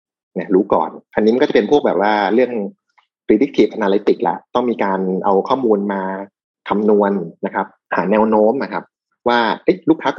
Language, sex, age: Thai, male, 30-49